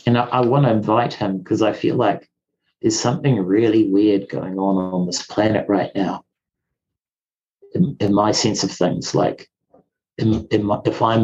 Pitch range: 95-120 Hz